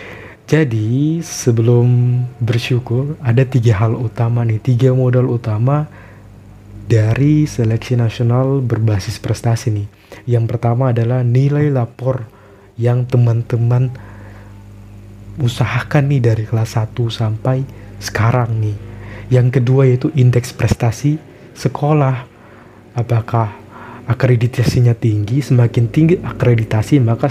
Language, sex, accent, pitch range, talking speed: Indonesian, male, native, 110-125 Hz, 100 wpm